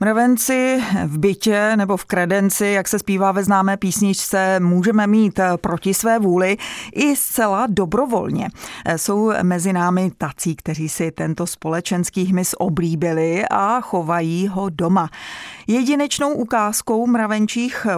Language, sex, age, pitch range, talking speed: Czech, female, 30-49, 170-215 Hz, 125 wpm